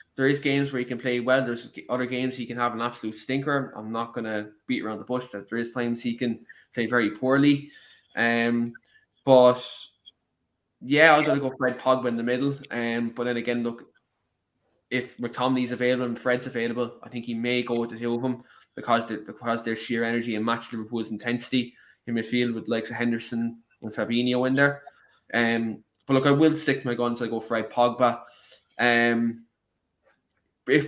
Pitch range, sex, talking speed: 115-130 Hz, male, 195 wpm